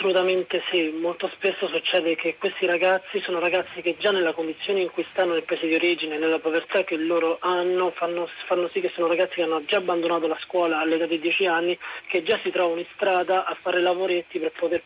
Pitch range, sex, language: 165-185 Hz, male, Italian